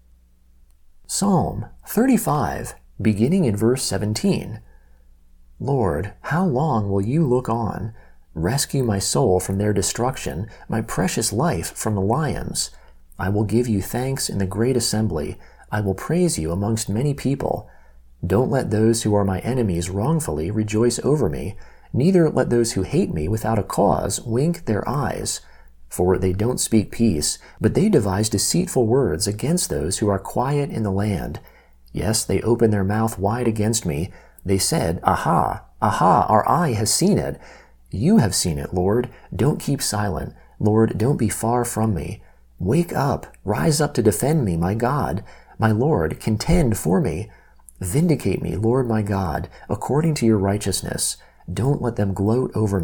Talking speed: 160 wpm